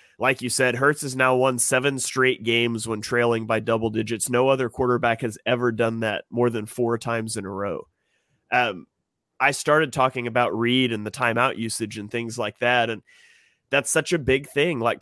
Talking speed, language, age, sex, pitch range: 200 wpm, English, 30-49, male, 120-150 Hz